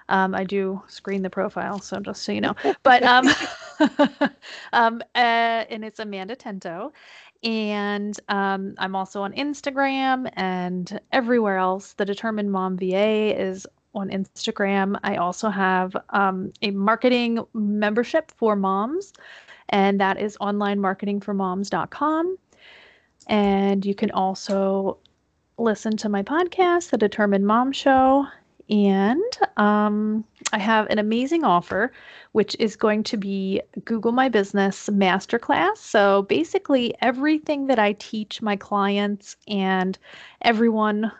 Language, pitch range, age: English, 195-235 Hz, 30-49